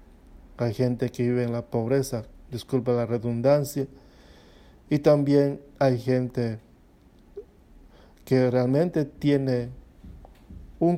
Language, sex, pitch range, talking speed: English, male, 110-135 Hz, 100 wpm